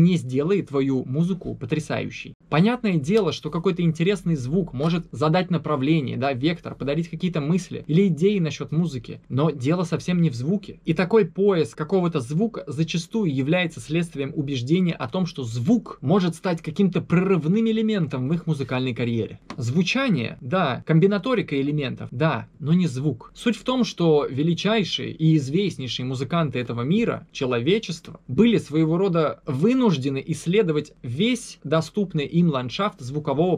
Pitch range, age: 140-180 Hz, 20-39